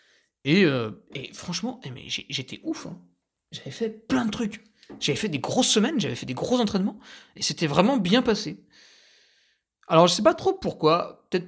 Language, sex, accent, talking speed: French, male, French, 190 wpm